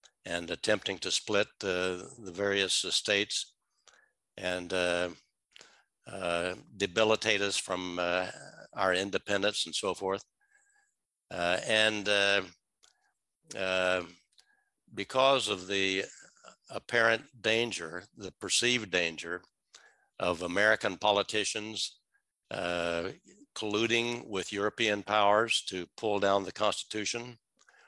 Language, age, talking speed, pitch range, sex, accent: English, 60-79, 95 wpm, 90-110 Hz, male, American